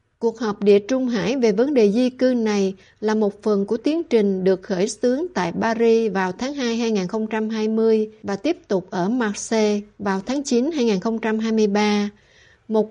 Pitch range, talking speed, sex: 210-250 Hz, 165 wpm, female